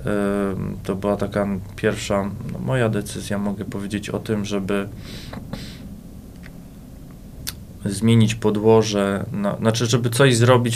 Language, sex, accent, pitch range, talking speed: Polish, male, native, 105-115 Hz, 105 wpm